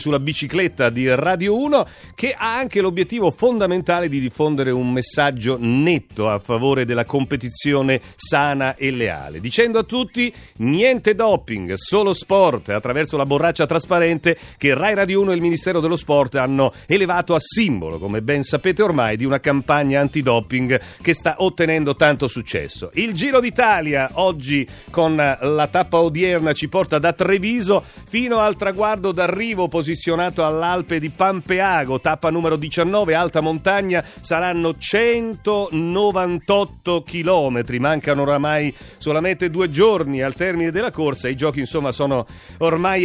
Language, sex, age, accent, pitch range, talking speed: Italian, male, 40-59, native, 140-185 Hz, 140 wpm